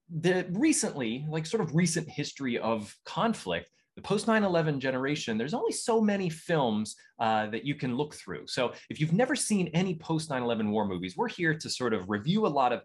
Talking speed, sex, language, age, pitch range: 200 wpm, male, English, 30-49, 100-160 Hz